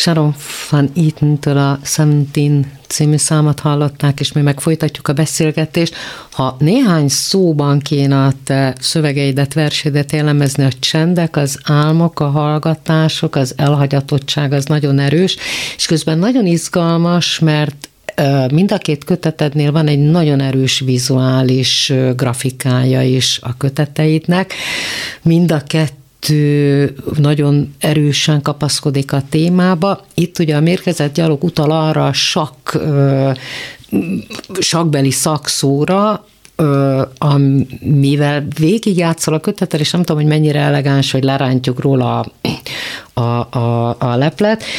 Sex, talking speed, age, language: female, 120 wpm, 50-69, Hungarian